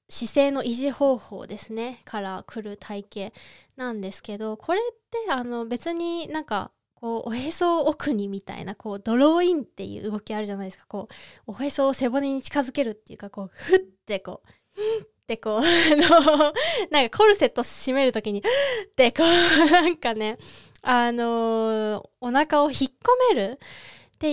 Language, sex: Japanese, female